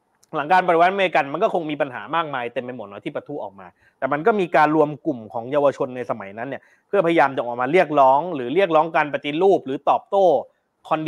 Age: 20-39